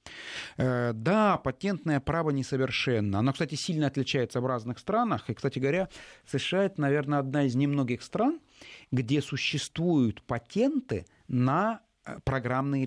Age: 30-49